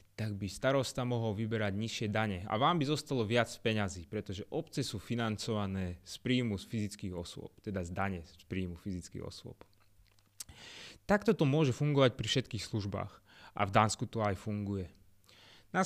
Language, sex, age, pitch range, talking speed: Slovak, male, 20-39, 100-140 Hz, 165 wpm